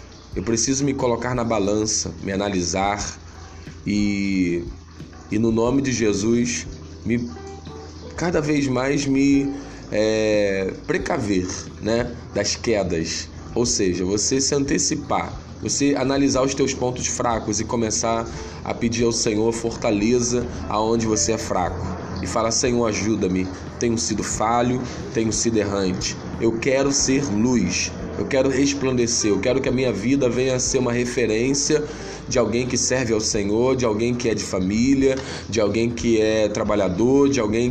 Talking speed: 150 wpm